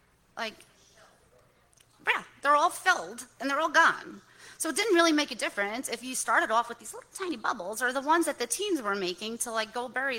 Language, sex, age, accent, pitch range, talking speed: English, female, 30-49, American, 195-280 Hz, 220 wpm